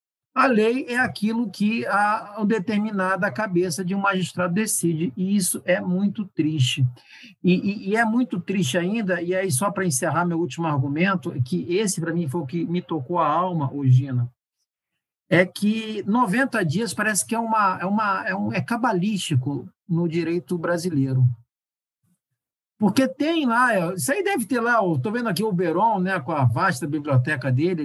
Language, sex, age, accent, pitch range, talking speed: Portuguese, male, 50-69, Brazilian, 160-225 Hz, 165 wpm